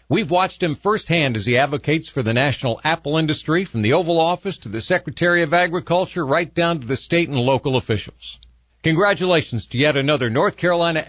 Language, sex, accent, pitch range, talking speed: English, male, American, 120-170 Hz, 190 wpm